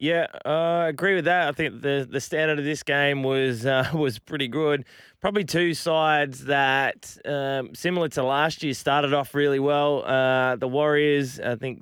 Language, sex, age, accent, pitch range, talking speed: English, male, 20-39, Australian, 130-145 Hz, 190 wpm